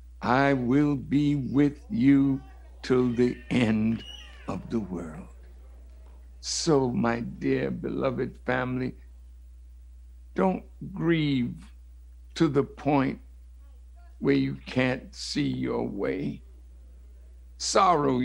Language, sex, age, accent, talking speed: English, male, 60-79, American, 90 wpm